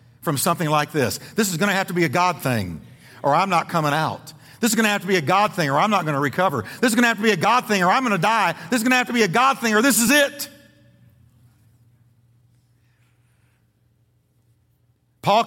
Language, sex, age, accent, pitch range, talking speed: English, male, 50-69, American, 150-225 Hz, 250 wpm